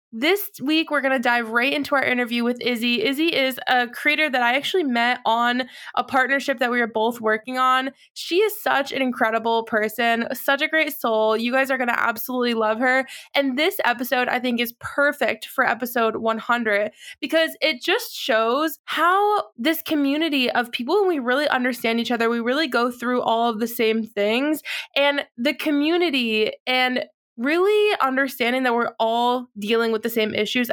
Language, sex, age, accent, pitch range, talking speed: English, female, 20-39, American, 230-280 Hz, 185 wpm